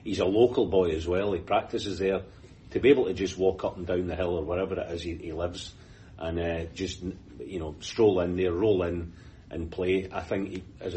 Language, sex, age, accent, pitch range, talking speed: English, male, 40-59, British, 90-105 Hz, 230 wpm